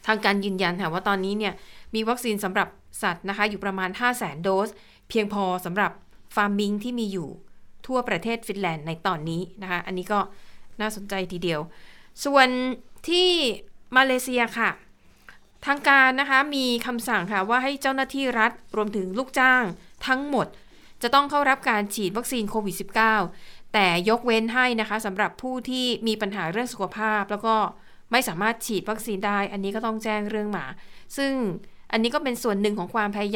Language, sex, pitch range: Thai, female, 200-245 Hz